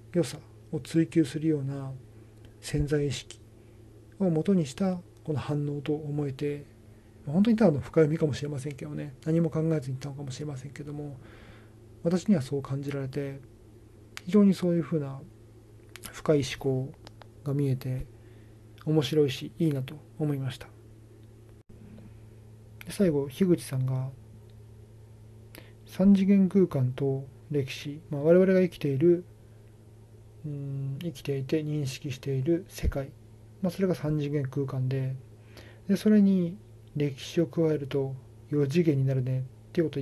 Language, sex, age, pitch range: Japanese, male, 40-59, 110-150 Hz